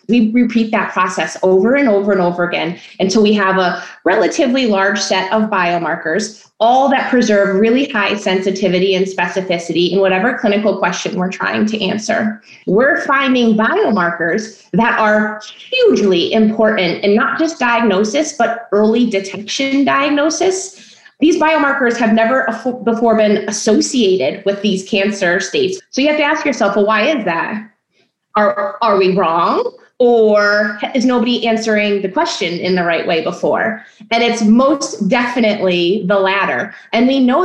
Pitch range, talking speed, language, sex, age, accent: 195-245 Hz, 150 wpm, English, female, 20-39, American